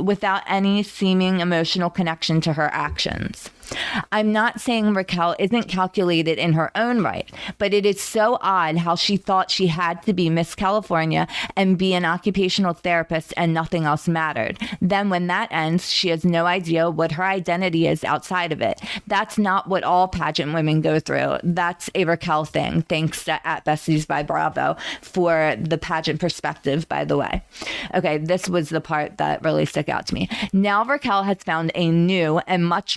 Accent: American